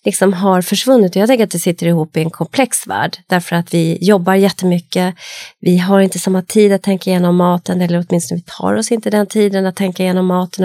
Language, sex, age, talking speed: Swedish, female, 30-49, 225 wpm